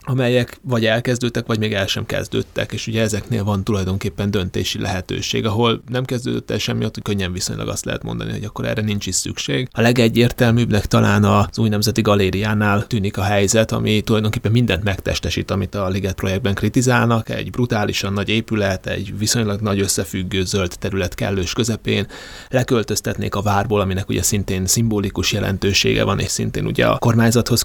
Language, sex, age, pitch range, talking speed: Hungarian, male, 30-49, 100-115 Hz, 165 wpm